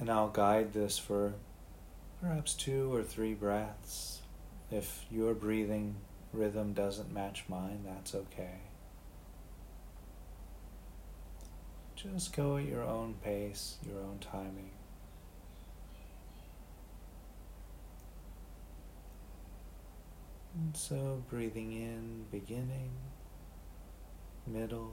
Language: English